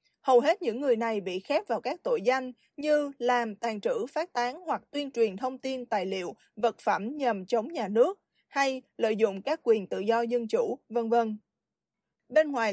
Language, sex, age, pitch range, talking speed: Vietnamese, female, 20-39, 230-285 Hz, 205 wpm